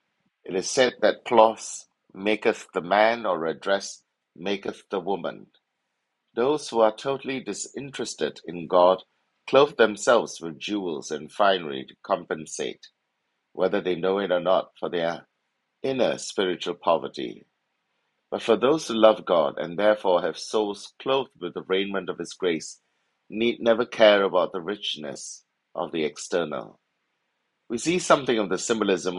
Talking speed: 150 wpm